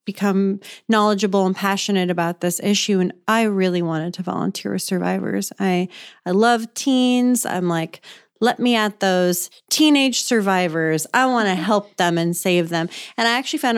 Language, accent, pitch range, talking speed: English, American, 180-230 Hz, 170 wpm